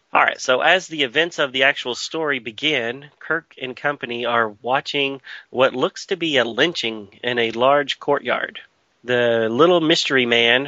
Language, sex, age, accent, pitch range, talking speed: English, male, 30-49, American, 120-145 Hz, 170 wpm